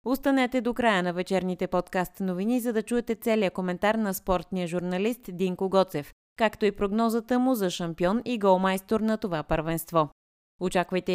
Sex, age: female, 20-39